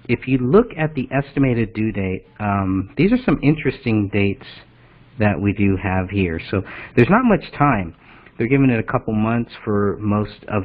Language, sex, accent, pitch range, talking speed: English, male, American, 105-135 Hz, 185 wpm